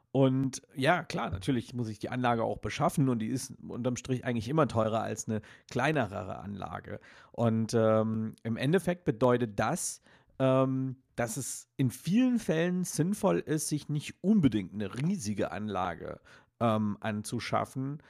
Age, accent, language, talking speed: 50-69, German, German, 145 wpm